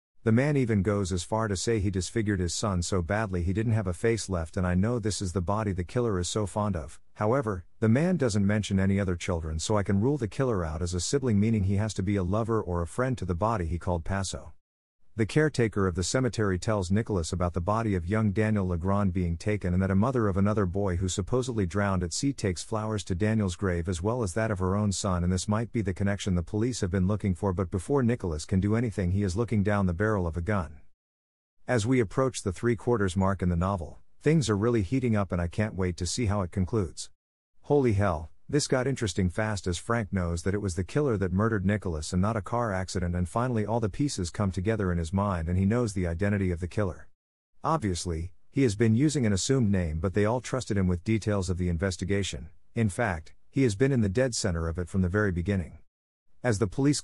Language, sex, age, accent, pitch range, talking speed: English, male, 50-69, American, 90-110 Hz, 245 wpm